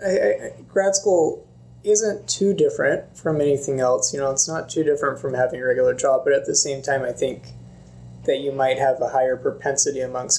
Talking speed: 210 wpm